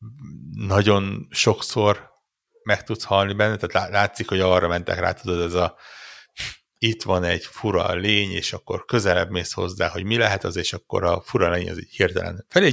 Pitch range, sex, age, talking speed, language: 90-115 Hz, male, 60-79, 180 wpm, Hungarian